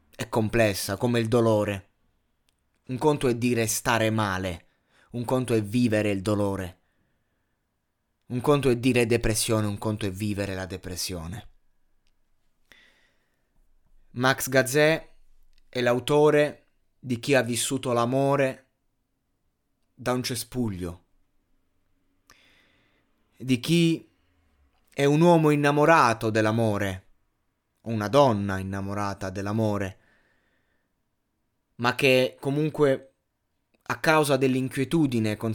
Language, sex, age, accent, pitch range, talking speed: Italian, male, 20-39, native, 100-130 Hz, 100 wpm